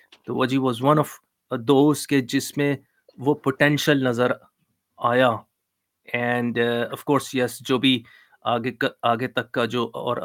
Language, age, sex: Urdu, 30-49, male